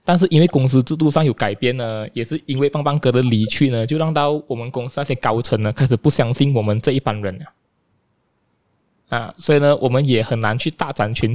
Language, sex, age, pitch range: Chinese, male, 20-39, 120-150 Hz